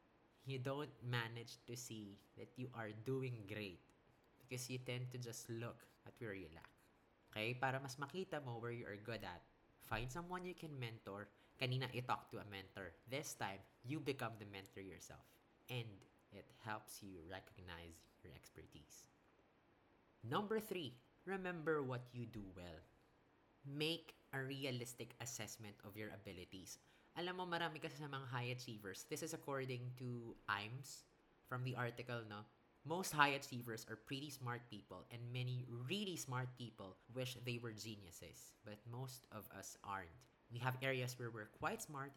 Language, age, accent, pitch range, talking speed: English, 20-39, Filipino, 105-135 Hz, 160 wpm